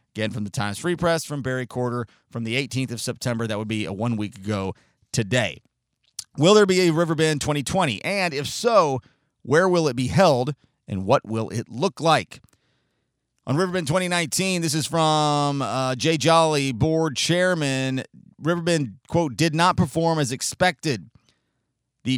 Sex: male